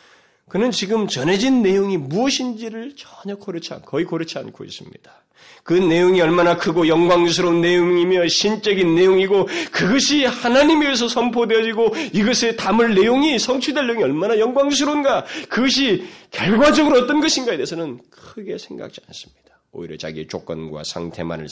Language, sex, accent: Korean, male, native